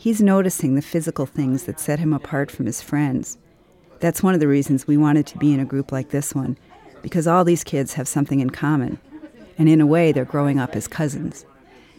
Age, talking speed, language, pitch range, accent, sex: 50-69, 220 wpm, English, 140-170 Hz, American, female